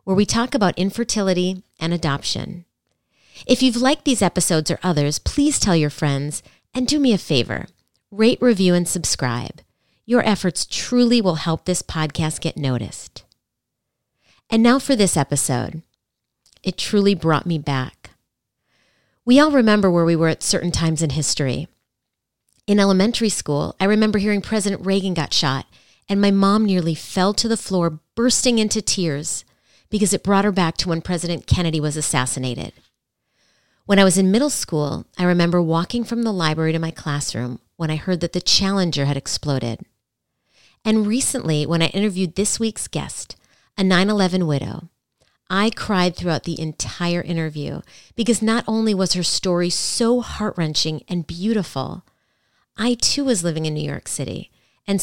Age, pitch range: 40-59, 150-205 Hz